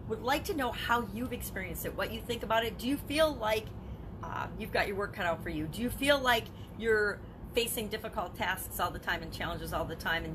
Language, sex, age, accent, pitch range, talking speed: English, female, 40-59, American, 165-235 Hz, 245 wpm